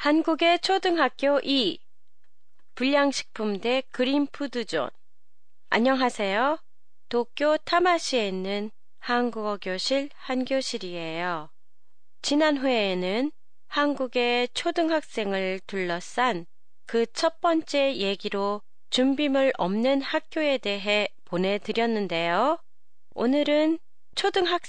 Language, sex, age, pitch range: Japanese, female, 30-49, 195-270 Hz